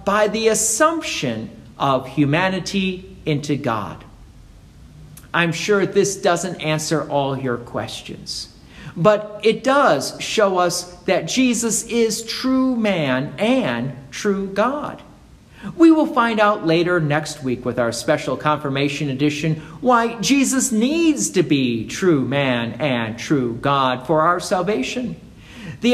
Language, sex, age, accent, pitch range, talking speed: English, male, 50-69, American, 150-230 Hz, 125 wpm